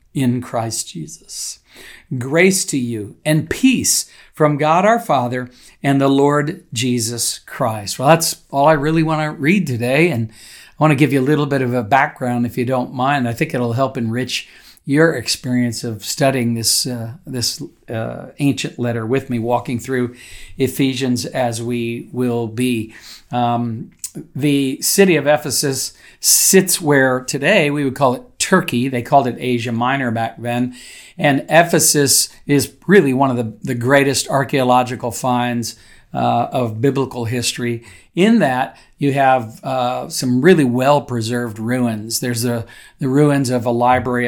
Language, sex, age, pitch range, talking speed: English, male, 50-69, 120-140 Hz, 160 wpm